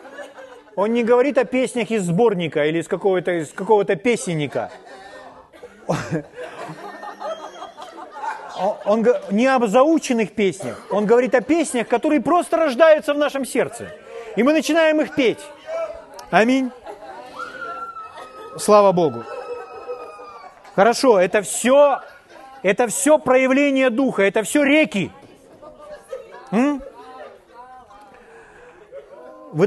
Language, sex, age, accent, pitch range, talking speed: Russian, male, 30-49, native, 220-310 Hz, 95 wpm